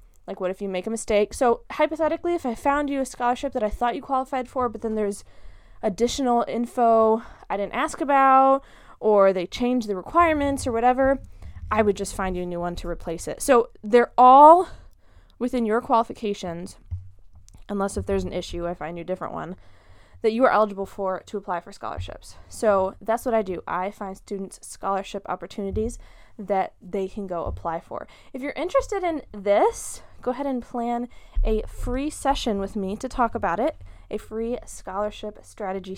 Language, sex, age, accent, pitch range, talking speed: English, female, 20-39, American, 195-250 Hz, 185 wpm